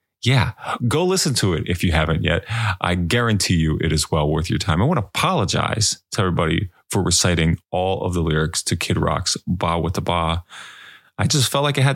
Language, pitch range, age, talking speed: English, 85-110 Hz, 20-39, 215 wpm